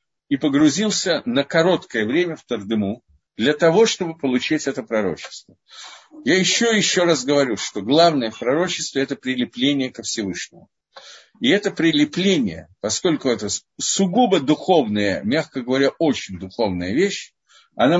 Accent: native